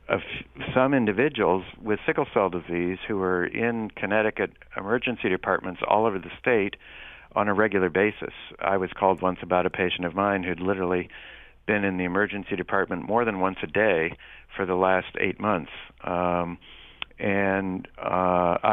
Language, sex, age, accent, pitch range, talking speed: English, male, 60-79, American, 90-100 Hz, 160 wpm